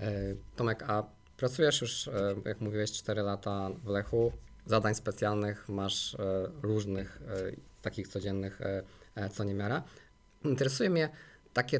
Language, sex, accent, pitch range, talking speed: Polish, male, native, 105-130 Hz, 110 wpm